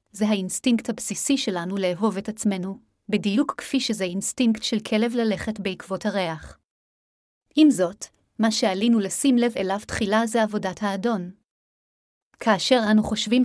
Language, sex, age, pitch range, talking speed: Hebrew, female, 30-49, 195-225 Hz, 135 wpm